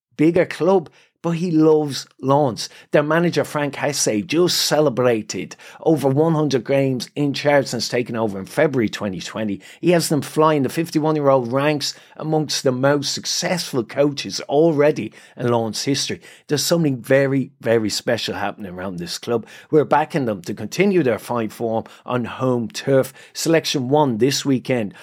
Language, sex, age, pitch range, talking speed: English, male, 30-49, 120-155 Hz, 155 wpm